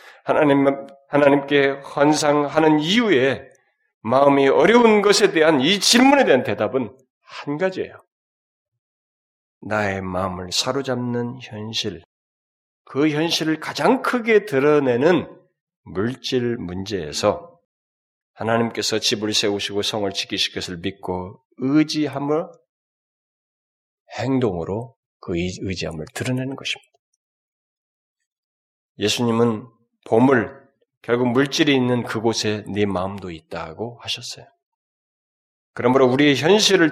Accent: native